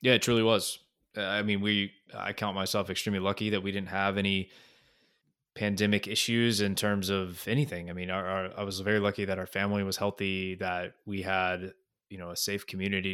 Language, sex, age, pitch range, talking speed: English, male, 20-39, 90-100 Hz, 200 wpm